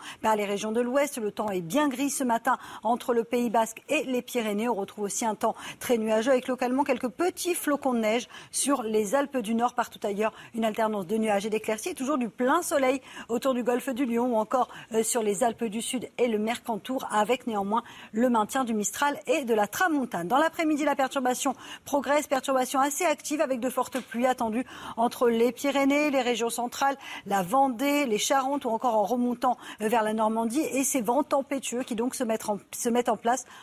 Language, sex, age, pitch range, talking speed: French, female, 40-59, 225-270 Hz, 215 wpm